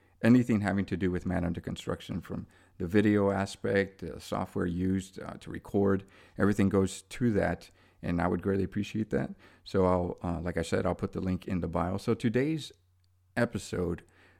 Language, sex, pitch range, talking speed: English, male, 90-105 Hz, 185 wpm